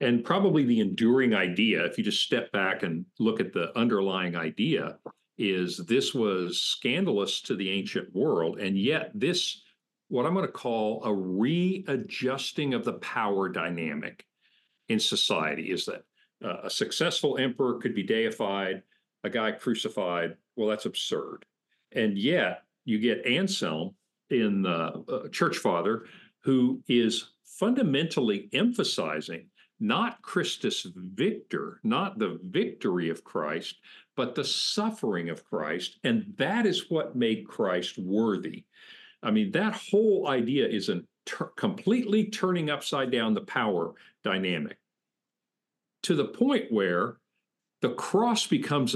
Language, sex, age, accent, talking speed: English, male, 50-69, American, 135 wpm